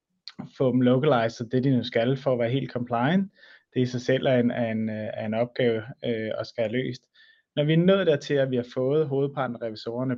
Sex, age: male, 30-49